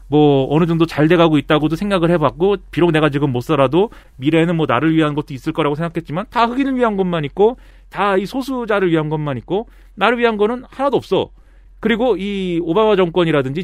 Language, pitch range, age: Korean, 135-195 Hz, 40-59